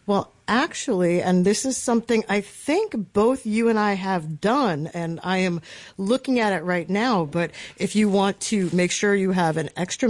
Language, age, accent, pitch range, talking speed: English, 50-69, American, 175-215 Hz, 195 wpm